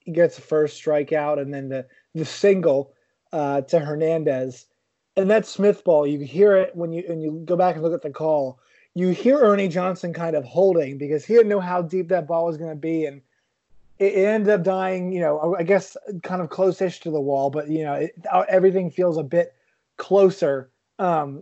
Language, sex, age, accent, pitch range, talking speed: English, male, 20-39, American, 155-185 Hz, 210 wpm